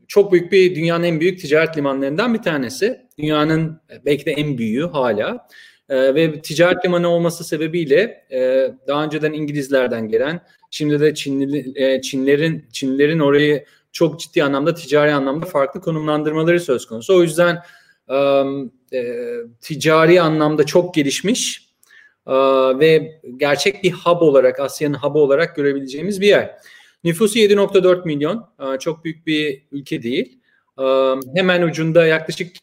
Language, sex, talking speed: Turkish, male, 135 wpm